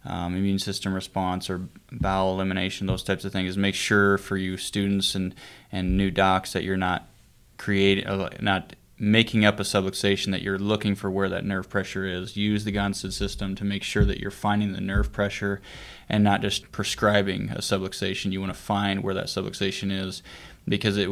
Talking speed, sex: 195 wpm, male